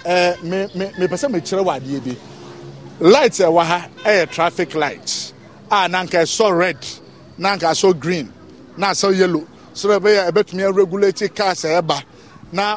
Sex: male